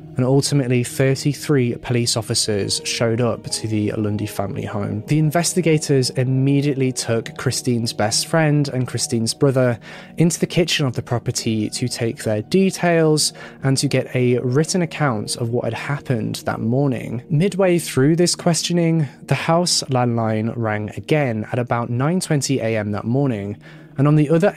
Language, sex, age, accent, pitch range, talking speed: English, male, 20-39, British, 115-155 Hz, 150 wpm